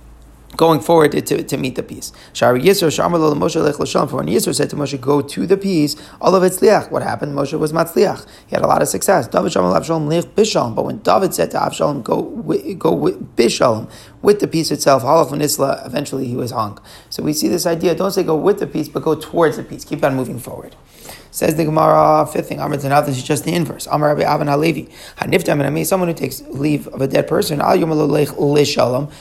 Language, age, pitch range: English, 30-49, 145-170 Hz